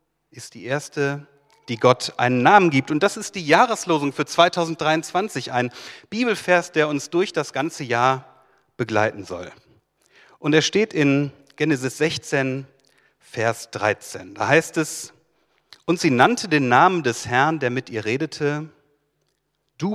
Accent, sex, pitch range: German, male, 125-165 Hz